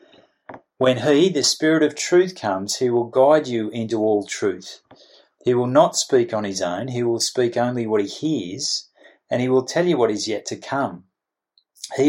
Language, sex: English, male